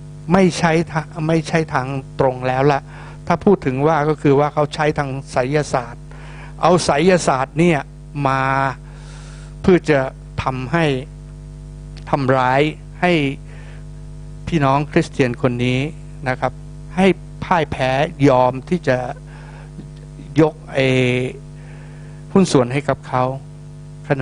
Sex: male